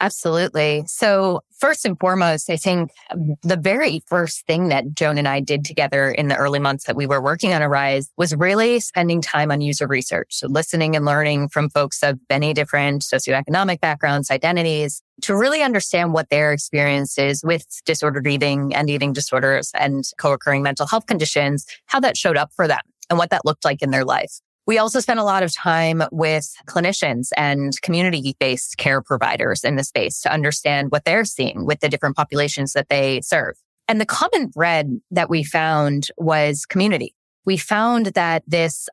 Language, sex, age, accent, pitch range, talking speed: English, female, 20-39, American, 145-175 Hz, 180 wpm